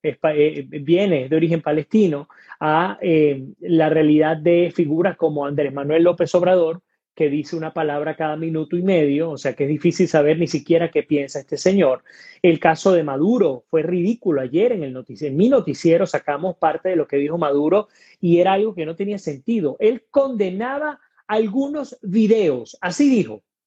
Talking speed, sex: 170 wpm, male